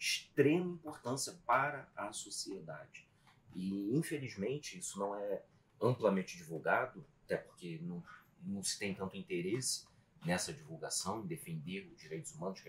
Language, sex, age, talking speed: Portuguese, male, 40-59, 135 wpm